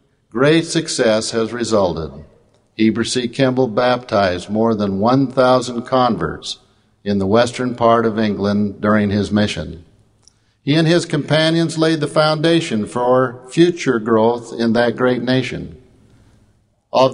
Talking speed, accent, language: 125 wpm, American, English